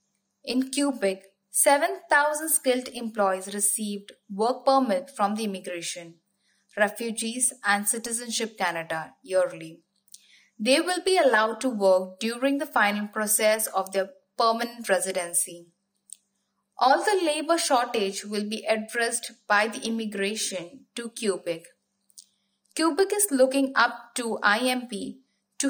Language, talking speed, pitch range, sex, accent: English, 115 wpm, 200-260 Hz, female, Indian